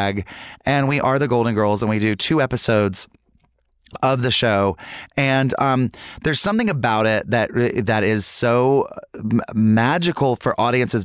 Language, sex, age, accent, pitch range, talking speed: English, male, 30-49, American, 105-130 Hz, 145 wpm